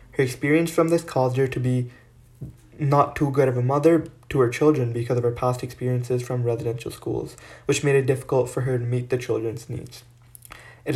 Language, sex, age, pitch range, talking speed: English, male, 20-39, 125-140 Hz, 205 wpm